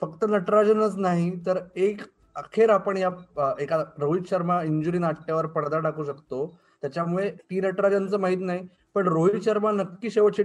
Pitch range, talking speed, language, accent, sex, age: 155-185 Hz, 125 wpm, Marathi, native, male, 20-39